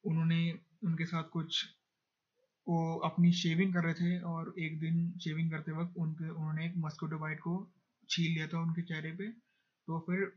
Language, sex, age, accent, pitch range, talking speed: Hindi, male, 20-39, native, 160-180 Hz, 170 wpm